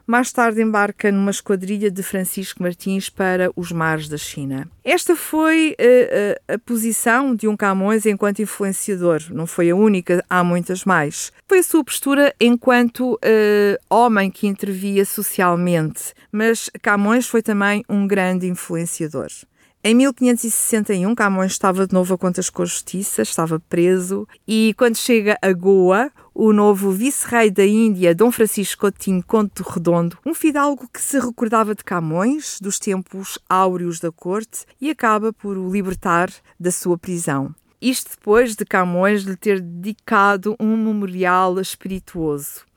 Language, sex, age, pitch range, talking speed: Portuguese, female, 50-69, 185-230 Hz, 150 wpm